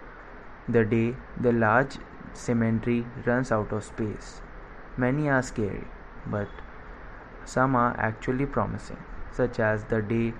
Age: 20-39